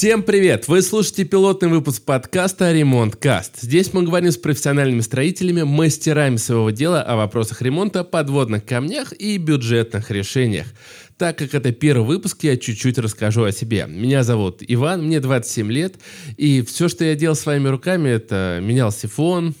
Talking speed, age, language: 155 wpm, 20-39, Russian